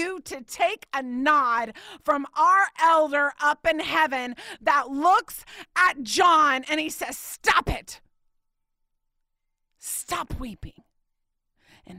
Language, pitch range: English, 215-360 Hz